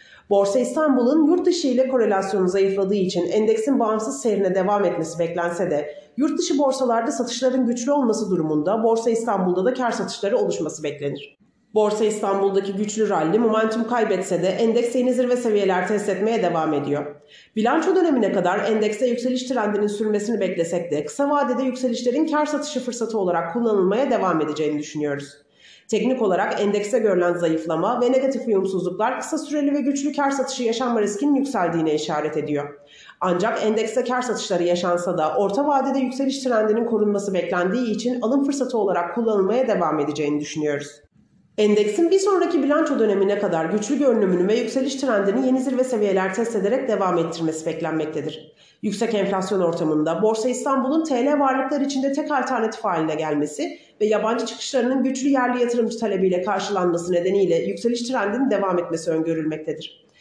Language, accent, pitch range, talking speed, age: Turkish, native, 180-250 Hz, 145 wpm, 40-59